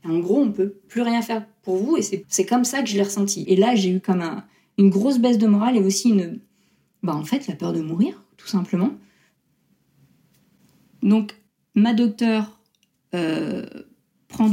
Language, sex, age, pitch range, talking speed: French, female, 40-59, 180-225 Hz, 195 wpm